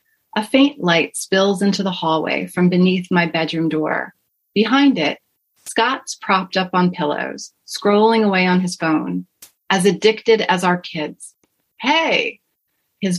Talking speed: 140 wpm